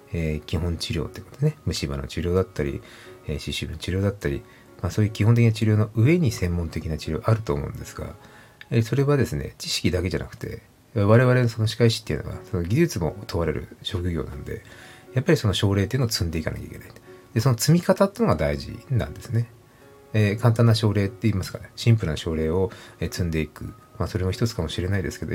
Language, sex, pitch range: Japanese, male, 95-125 Hz